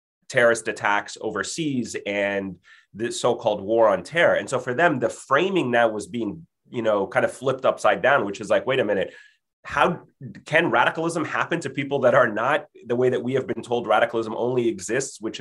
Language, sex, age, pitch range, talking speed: English, male, 30-49, 105-130 Hz, 200 wpm